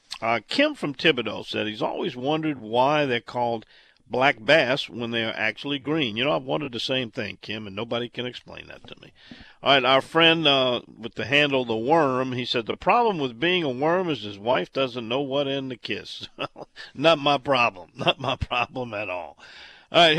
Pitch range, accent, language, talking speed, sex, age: 110-145 Hz, American, English, 210 wpm, male, 50-69